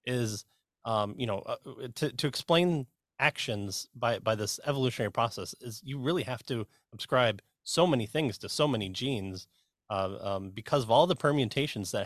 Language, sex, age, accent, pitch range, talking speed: English, male, 30-49, American, 105-135 Hz, 175 wpm